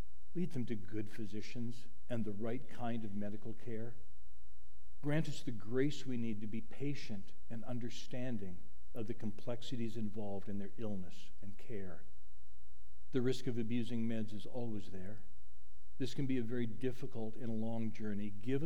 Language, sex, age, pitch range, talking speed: English, male, 60-79, 75-125 Hz, 160 wpm